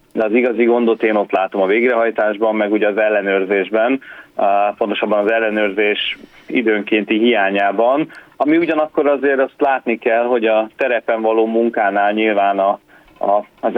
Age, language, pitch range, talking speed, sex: 30-49, Hungarian, 105-120 Hz, 150 wpm, male